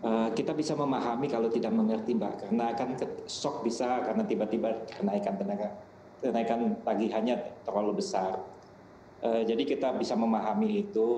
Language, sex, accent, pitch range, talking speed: English, male, Indonesian, 115-155 Hz, 135 wpm